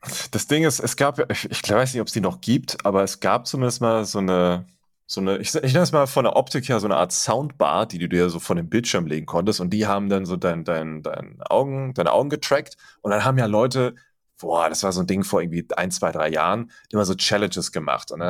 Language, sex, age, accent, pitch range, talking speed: German, male, 30-49, German, 95-130 Hz, 265 wpm